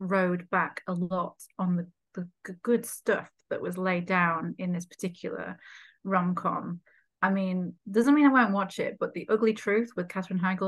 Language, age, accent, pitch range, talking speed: English, 30-49, British, 180-220 Hz, 185 wpm